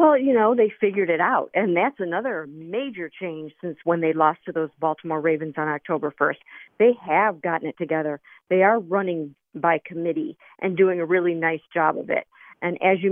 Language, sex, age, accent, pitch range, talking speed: English, female, 50-69, American, 160-190 Hz, 200 wpm